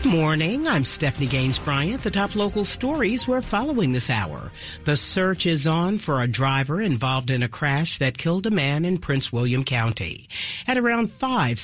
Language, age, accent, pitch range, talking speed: English, 50-69, American, 130-170 Hz, 185 wpm